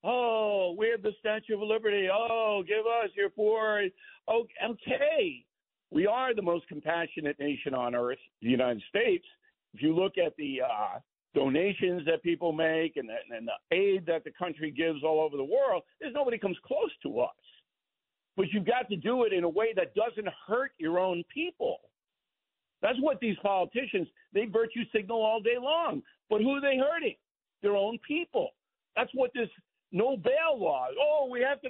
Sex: male